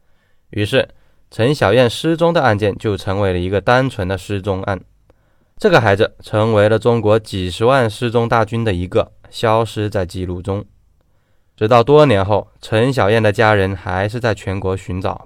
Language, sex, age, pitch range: Chinese, male, 20-39, 95-125 Hz